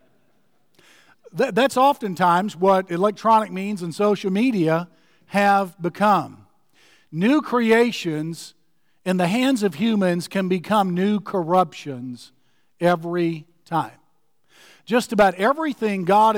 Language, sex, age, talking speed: English, male, 50-69, 100 wpm